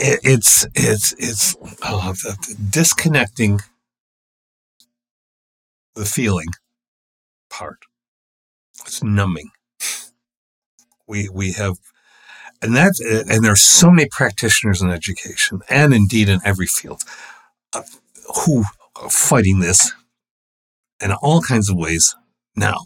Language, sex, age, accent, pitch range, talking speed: English, male, 60-79, American, 90-120 Hz, 110 wpm